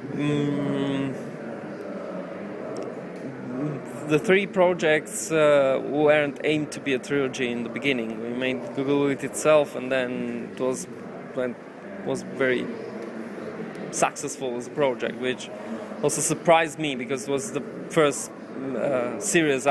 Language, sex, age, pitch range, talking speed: English, male, 20-39, 135-155 Hz, 125 wpm